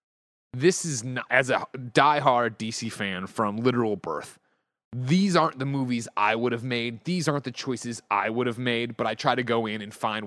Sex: male